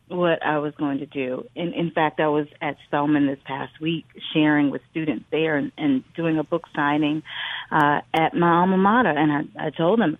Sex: female